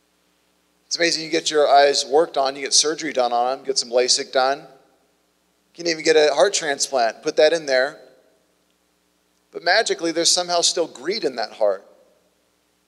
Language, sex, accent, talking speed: English, male, American, 175 wpm